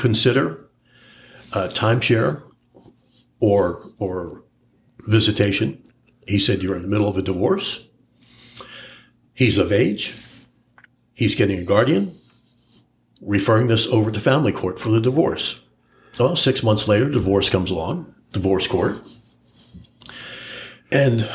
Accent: American